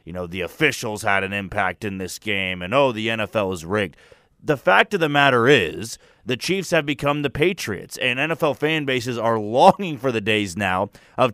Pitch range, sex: 115-155 Hz, male